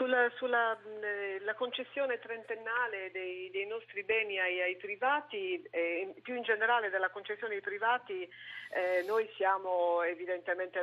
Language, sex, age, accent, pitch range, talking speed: Italian, female, 40-59, native, 175-220 Hz, 135 wpm